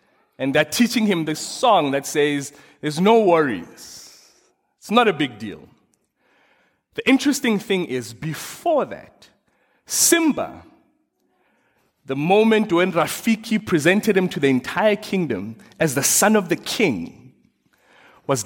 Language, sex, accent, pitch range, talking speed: English, male, South African, 150-225 Hz, 130 wpm